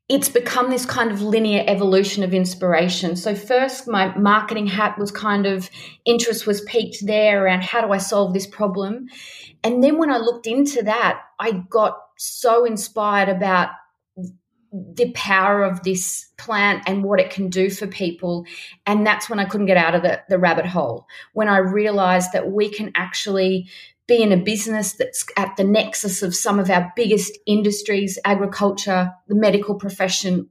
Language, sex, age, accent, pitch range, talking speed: English, female, 30-49, Australian, 185-215 Hz, 175 wpm